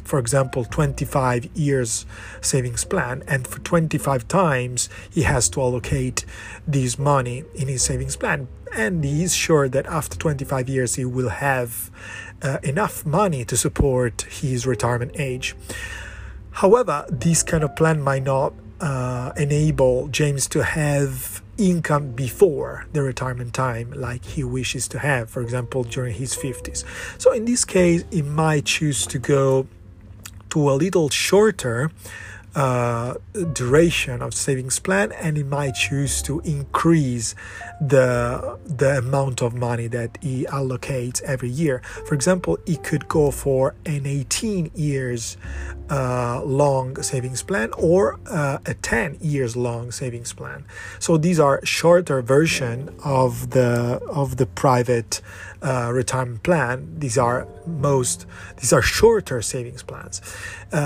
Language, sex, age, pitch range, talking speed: Italian, male, 50-69, 120-150 Hz, 140 wpm